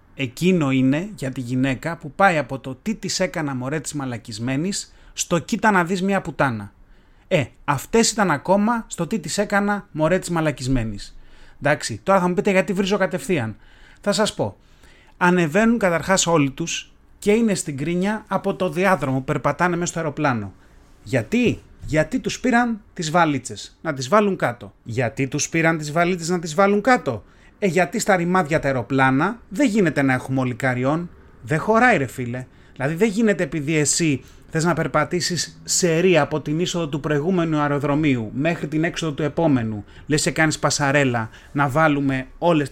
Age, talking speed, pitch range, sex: 30-49, 165 wpm, 135-190 Hz, male